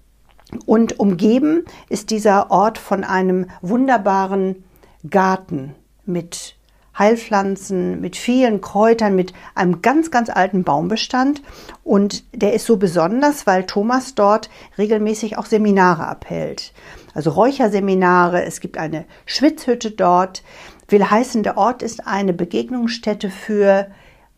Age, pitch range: 50-69, 185-230 Hz